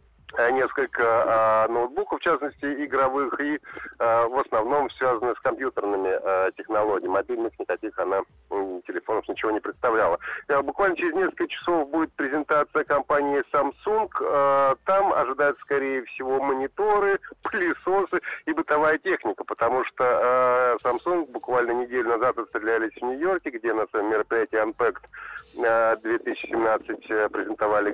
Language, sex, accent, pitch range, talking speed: Russian, male, native, 125-175 Hz, 125 wpm